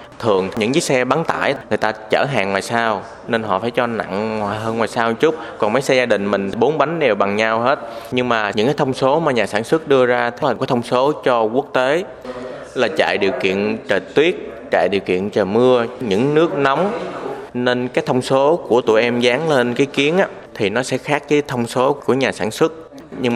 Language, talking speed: Vietnamese, 230 wpm